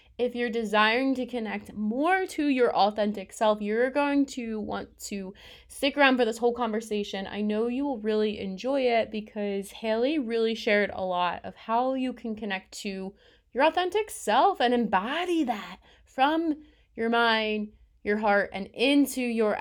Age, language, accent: 20-39, English, American